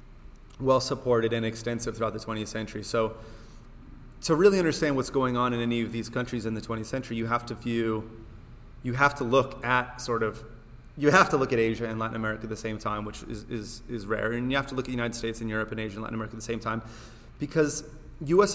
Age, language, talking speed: 30-49, English, 240 wpm